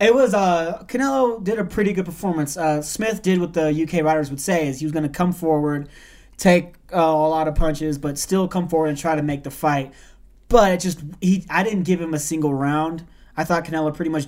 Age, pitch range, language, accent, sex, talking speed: 20-39, 150-180 Hz, English, American, male, 235 wpm